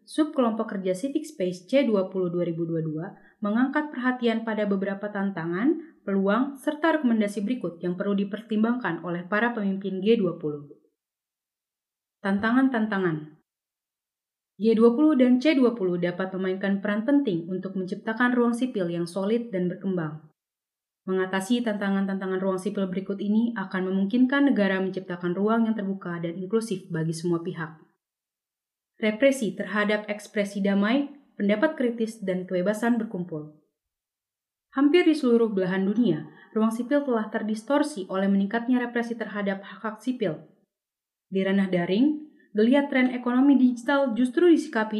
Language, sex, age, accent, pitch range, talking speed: Indonesian, female, 30-49, native, 190-235 Hz, 120 wpm